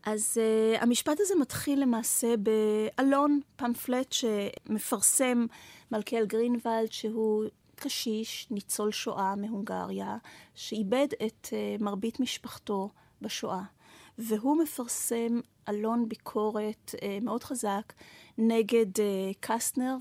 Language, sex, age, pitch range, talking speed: Hebrew, female, 30-49, 205-235 Hz, 95 wpm